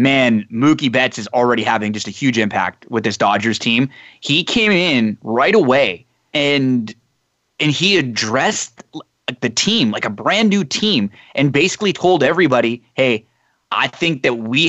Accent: American